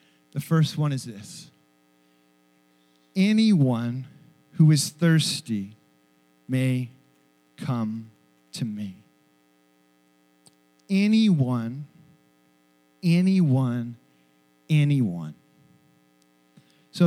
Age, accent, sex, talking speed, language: 40-59, American, male, 60 wpm, English